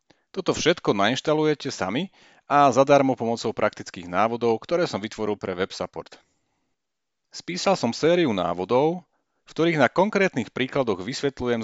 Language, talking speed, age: Slovak, 130 wpm, 40-59